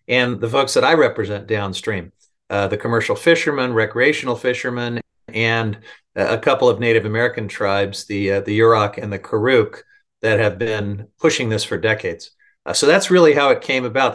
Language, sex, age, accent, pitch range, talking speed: English, male, 50-69, American, 105-125 Hz, 170 wpm